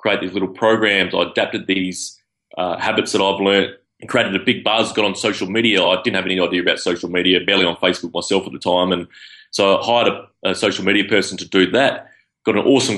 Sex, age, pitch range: male, 20-39, 95-110 Hz